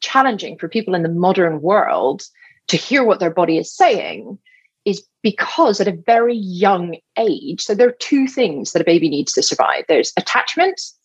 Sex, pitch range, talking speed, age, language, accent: female, 160-215 Hz, 185 wpm, 30-49, English, British